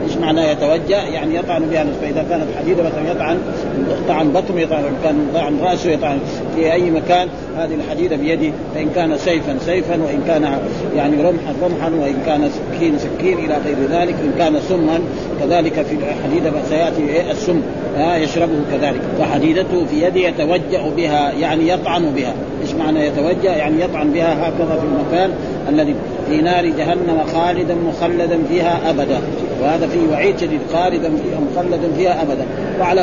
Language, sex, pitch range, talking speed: Arabic, male, 160-185 Hz, 155 wpm